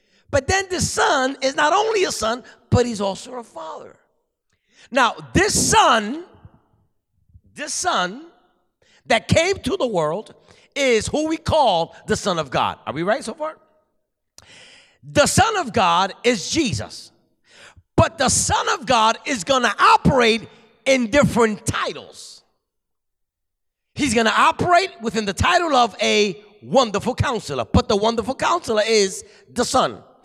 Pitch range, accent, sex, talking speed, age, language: 210-280 Hz, American, male, 145 wpm, 50-69, English